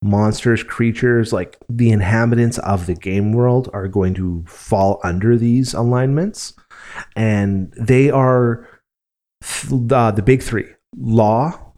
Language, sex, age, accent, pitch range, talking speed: English, male, 30-49, American, 105-130 Hz, 120 wpm